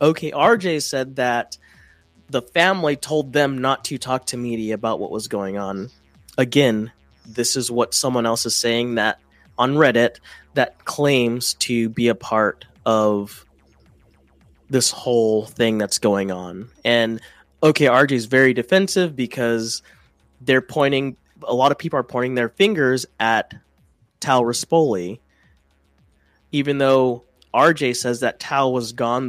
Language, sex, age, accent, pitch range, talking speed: English, male, 20-39, American, 115-140 Hz, 145 wpm